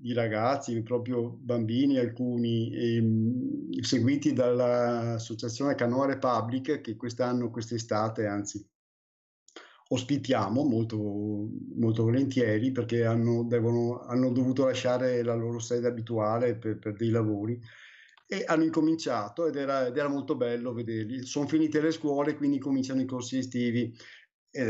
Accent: native